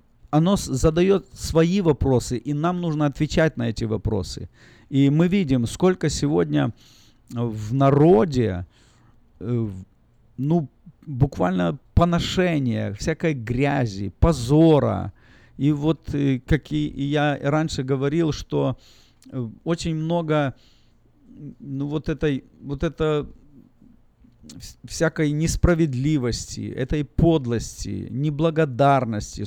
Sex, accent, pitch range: male, native, 120-155 Hz